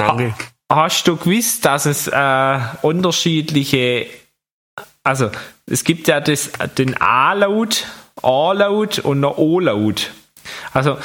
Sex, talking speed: male, 110 wpm